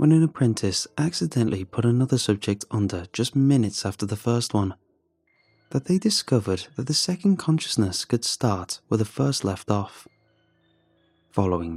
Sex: male